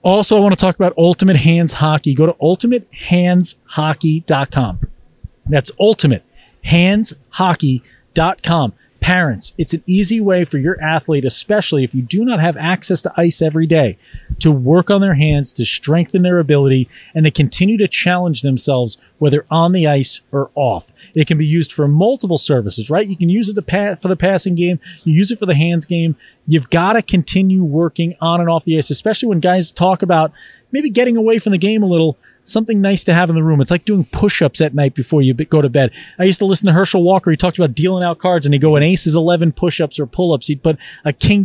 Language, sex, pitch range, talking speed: English, male, 150-185 Hz, 210 wpm